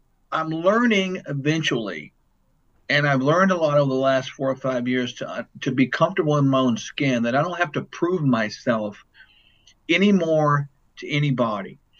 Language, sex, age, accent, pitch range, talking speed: English, male, 50-69, American, 130-160 Hz, 165 wpm